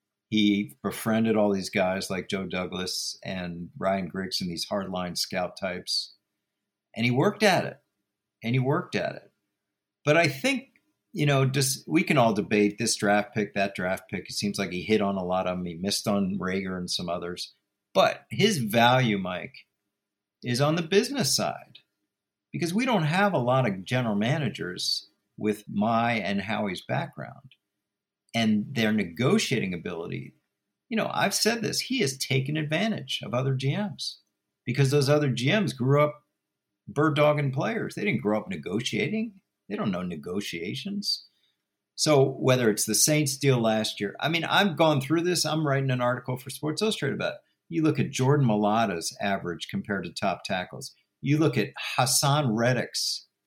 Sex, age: male, 50-69